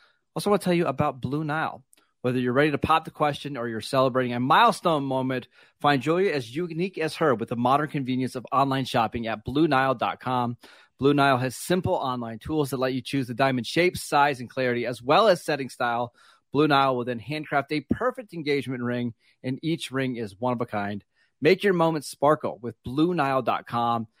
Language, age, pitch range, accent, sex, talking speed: English, 30-49, 120-155 Hz, American, male, 200 wpm